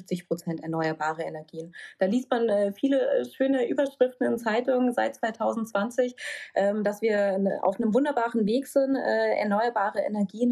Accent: German